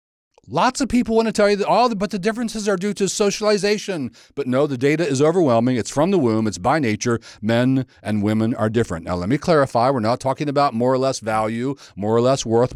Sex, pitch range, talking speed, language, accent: male, 105-135 Hz, 240 wpm, English, American